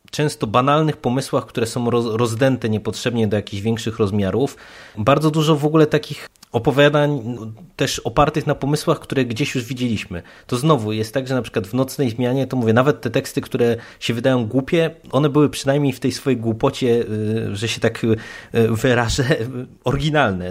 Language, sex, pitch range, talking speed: Polish, male, 110-135 Hz, 165 wpm